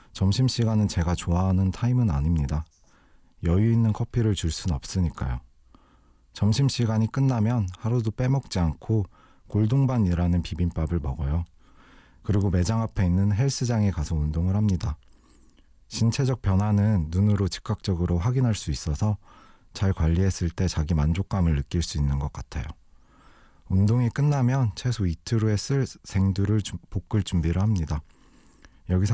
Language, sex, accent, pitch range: Korean, male, native, 85-115 Hz